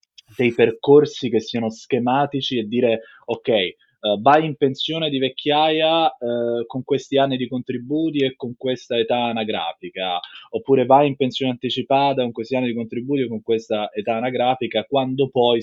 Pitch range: 110-135 Hz